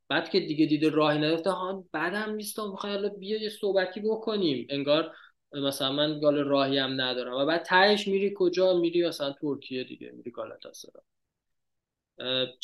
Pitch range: 130-170 Hz